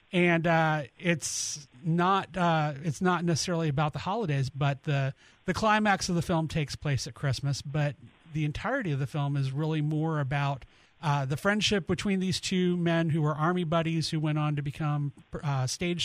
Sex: male